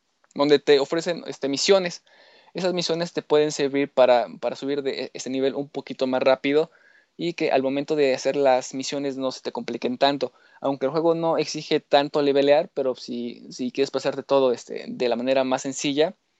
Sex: male